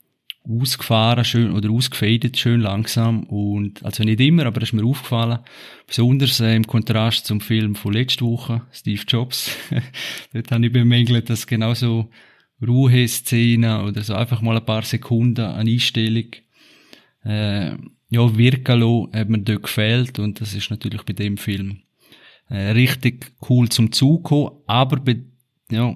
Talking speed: 155 wpm